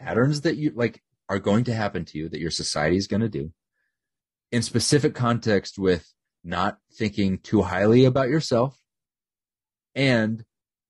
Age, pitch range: 30-49, 85-115 Hz